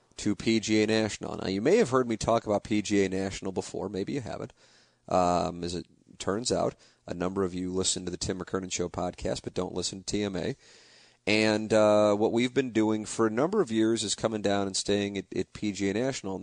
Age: 40-59